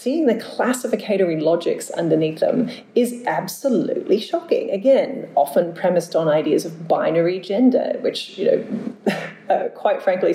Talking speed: 130 wpm